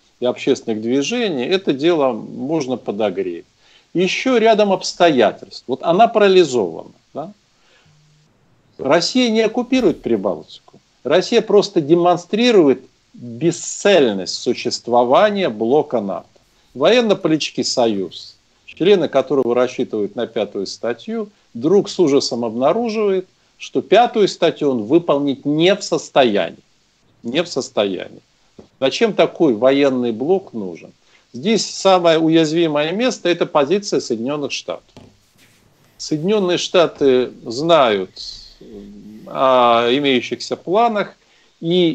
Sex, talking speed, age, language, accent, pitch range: male, 100 wpm, 50-69, Russian, native, 130-190 Hz